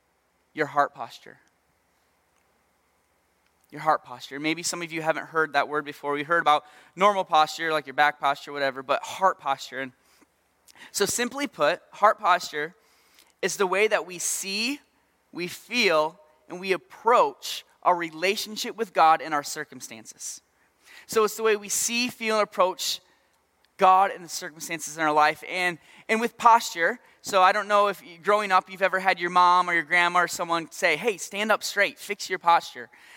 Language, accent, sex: English, American, male